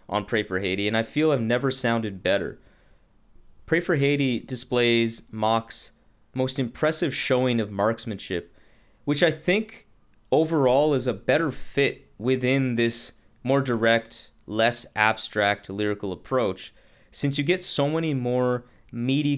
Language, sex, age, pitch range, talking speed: English, male, 20-39, 105-135 Hz, 135 wpm